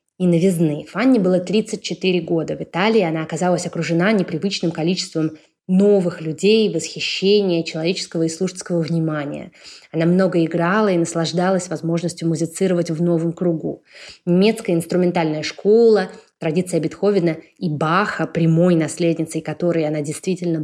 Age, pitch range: 20-39, 165-205 Hz